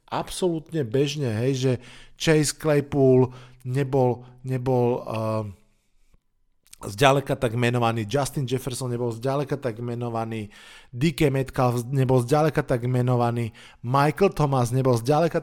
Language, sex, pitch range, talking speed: Slovak, male, 120-140 Hz, 110 wpm